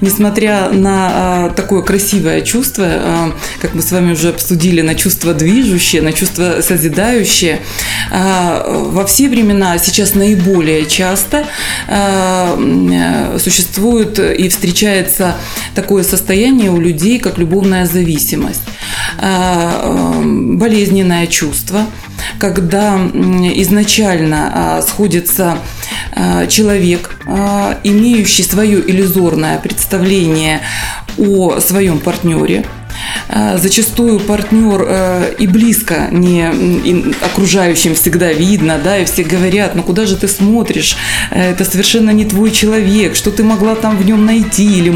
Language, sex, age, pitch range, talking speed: Russian, female, 20-39, 175-205 Hz, 105 wpm